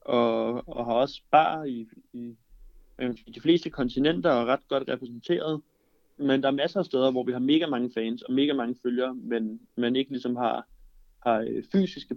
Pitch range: 120-145 Hz